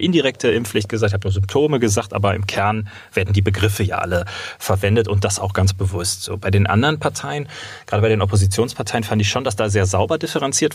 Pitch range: 100-115 Hz